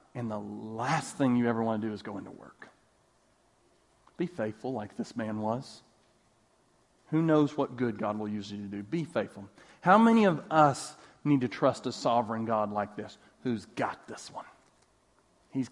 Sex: male